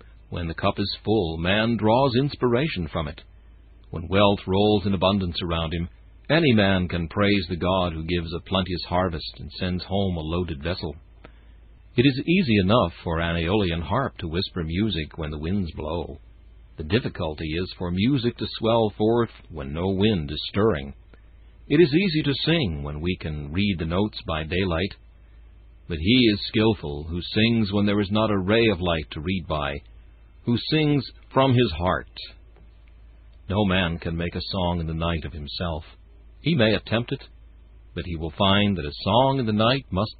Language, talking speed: English, 185 wpm